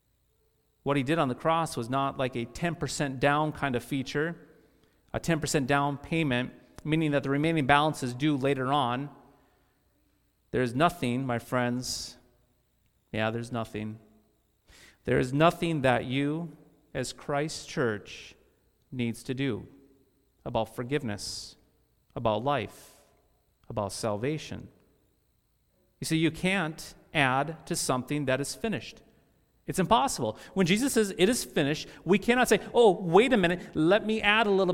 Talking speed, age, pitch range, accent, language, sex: 145 wpm, 40-59, 125-165 Hz, American, English, male